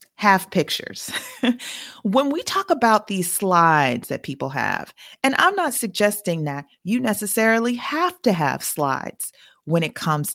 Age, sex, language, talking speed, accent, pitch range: 40-59, female, English, 145 wpm, American, 160-245 Hz